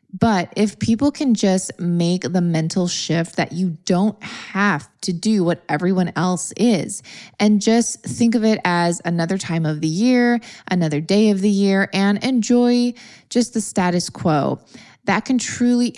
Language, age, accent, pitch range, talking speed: English, 20-39, American, 170-220 Hz, 165 wpm